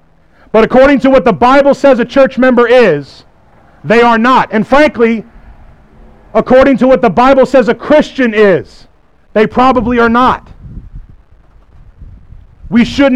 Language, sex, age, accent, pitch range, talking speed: English, male, 40-59, American, 195-255 Hz, 140 wpm